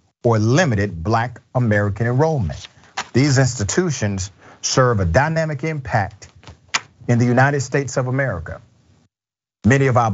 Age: 50-69